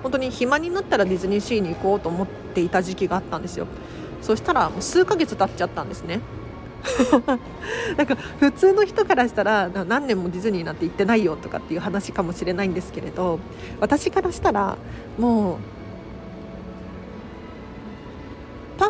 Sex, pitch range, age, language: female, 180-255 Hz, 40-59, Japanese